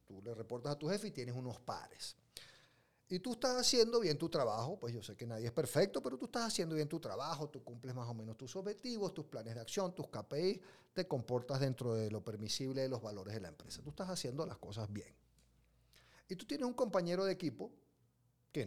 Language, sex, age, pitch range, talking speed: Spanish, male, 40-59, 120-150 Hz, 225 wpm